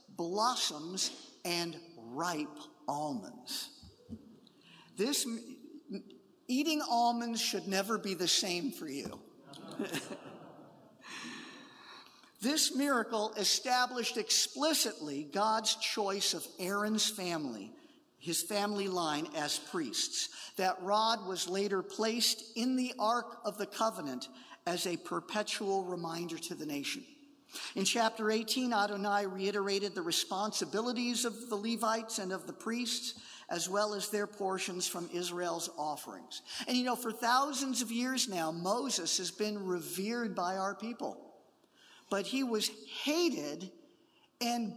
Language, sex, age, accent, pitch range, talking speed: English, male, 50-69, American, 190-250 Hz, 120 wpm